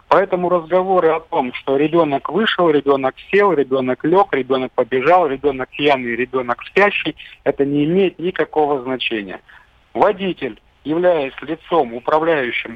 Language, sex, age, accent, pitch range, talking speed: Russian, male, 50-69, native, 130-170 Hz, 120 wpm